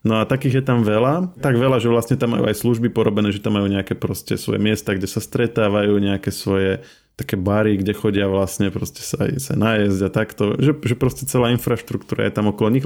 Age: 20-39